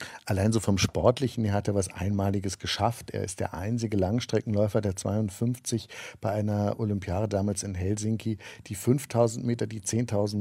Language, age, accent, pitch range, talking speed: German, 50-69, German, 105-120 Hz, 155 wpm